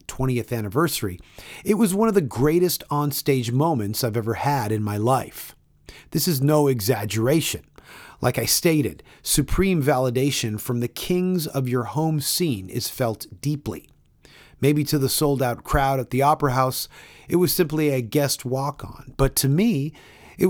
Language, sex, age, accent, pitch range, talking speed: English, male, 40-59, American, 115-150 Hz, 160 wpm